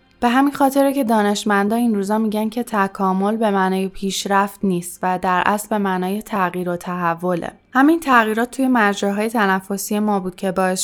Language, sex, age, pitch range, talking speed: Persian, female, 10-29, 185-220 Hz, 170 wpm